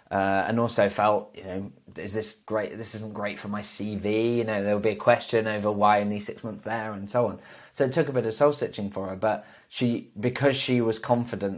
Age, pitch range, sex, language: 20-39, 95-110 Hz, male, English